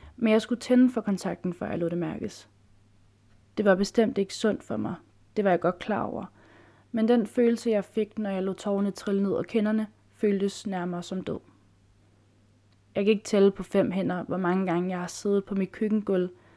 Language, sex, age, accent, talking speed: Danish, female, 20-39, native, 205 wpm